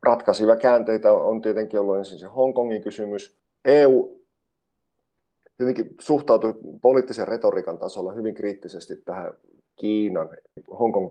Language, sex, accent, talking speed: Finnish, male, native, 110 wpm